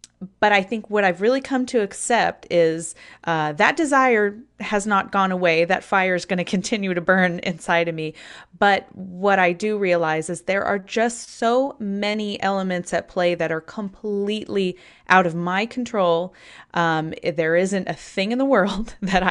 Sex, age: female, 30-49